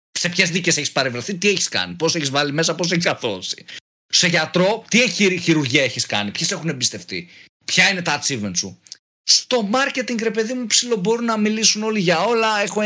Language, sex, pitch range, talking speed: Greek, male, 140-205 Hz, 190 wpm